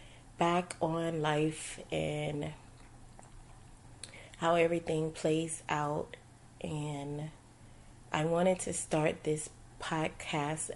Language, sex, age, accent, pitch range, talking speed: English, female, 30-49, American, 140-170 Hz, 85 wpm